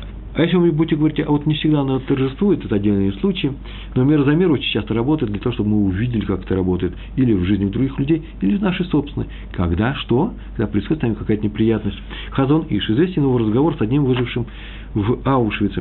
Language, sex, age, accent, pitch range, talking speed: Russian, male, 50-69, native, 105-145 Hz, 210 wpm